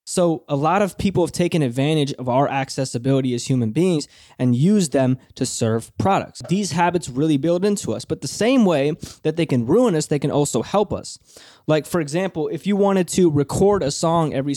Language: English